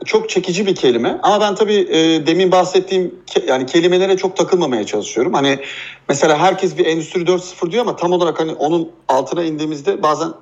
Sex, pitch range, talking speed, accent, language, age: male, 155-215 Hz, 180 wpm, native, Turkish, 40-59